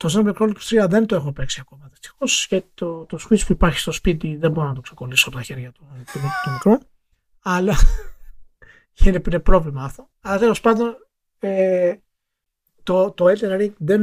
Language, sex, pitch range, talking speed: Greek, male, 145-185 Hz, 170 wpm